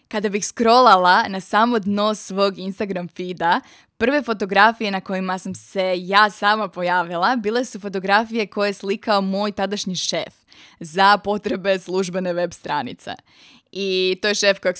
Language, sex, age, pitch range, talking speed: Croatian, female, 20-39, 185-215 Hz, 150 wpm